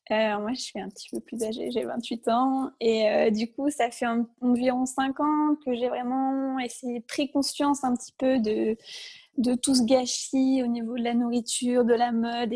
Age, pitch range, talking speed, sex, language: 20-39, 230-255 Hz, 210 wpm, female, French